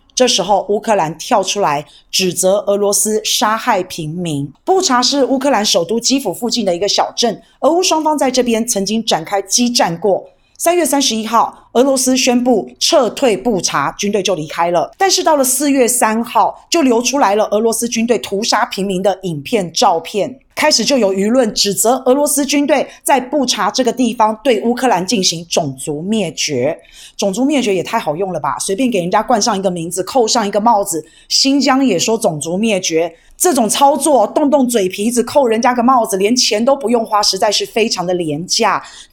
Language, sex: Chinese, female